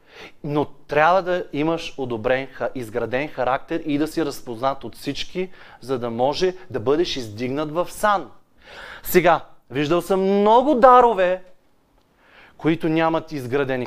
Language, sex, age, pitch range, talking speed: Bulgarian, male, 30-49, 130-175 Hz, 125 wpm